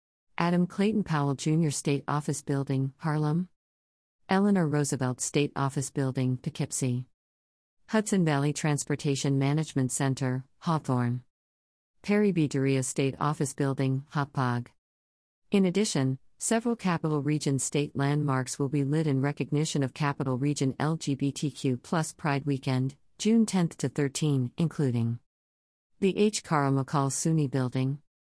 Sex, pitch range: female, 125-155 Hz